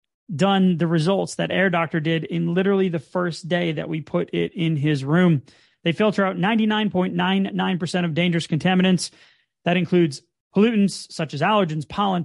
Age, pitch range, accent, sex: 30-49, 170-205 Hz, American, male